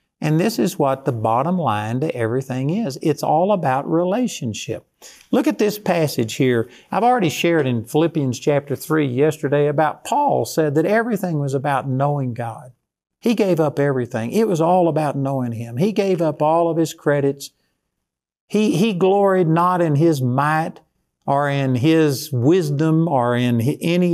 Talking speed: 170 wpm